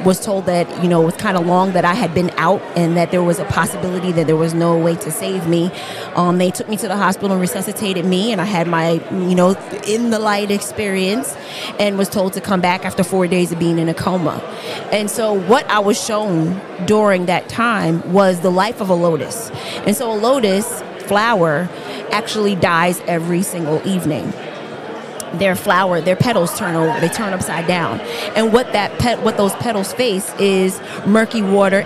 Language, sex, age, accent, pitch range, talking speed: English, female, 20-39, American, 175-205 Hz, 200 wpm